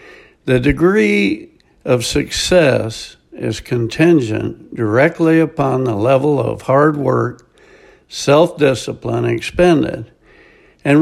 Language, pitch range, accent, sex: English, 140-180 Hz, American, male